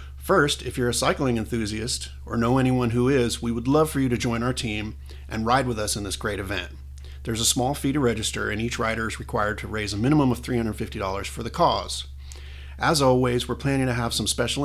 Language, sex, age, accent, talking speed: English, male, 40-59, American, 230 wpm